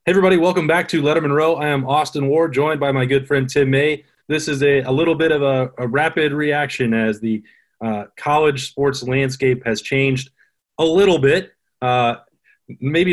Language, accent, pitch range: English, American, 120-140 Hz